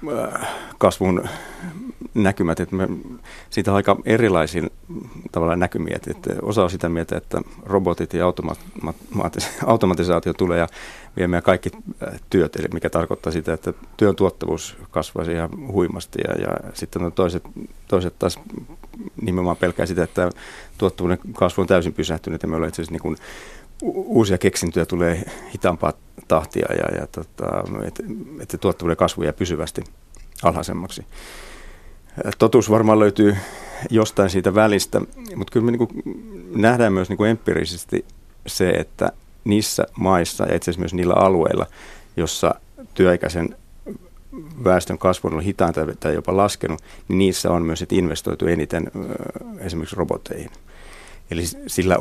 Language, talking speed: Finnish, 125 wpm